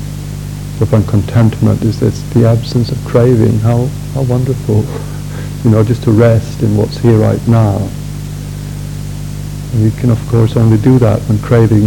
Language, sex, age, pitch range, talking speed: Swedish, male, 60-79, 110-145 Hz, 155 wpm